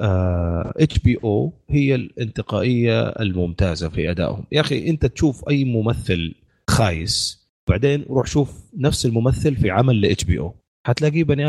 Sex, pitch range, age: male, 95-130 Hz, 30-49